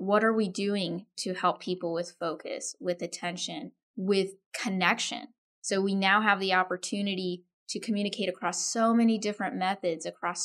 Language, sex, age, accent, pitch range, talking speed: English, female, 10-29, American, 180-225 Hz, 155 wpm